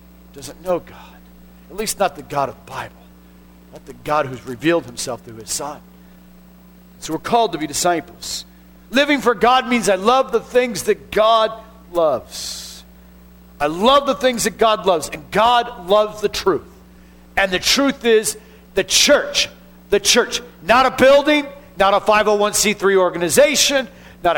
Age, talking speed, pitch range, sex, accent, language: 50-69, 160 wpm, 160-240 Hz, male, American, English